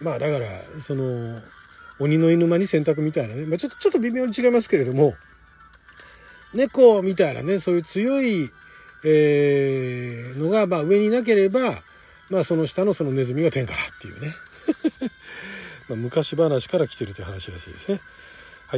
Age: 40-59